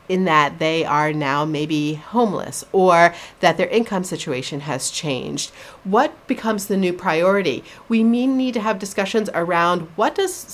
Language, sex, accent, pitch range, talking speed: English, female, American, 175-235 Hz, 160 wpm